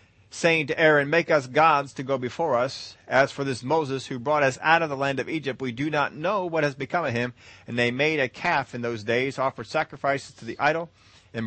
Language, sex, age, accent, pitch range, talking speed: English, male, 40-59, American, 105-150 Hz, 240 wpm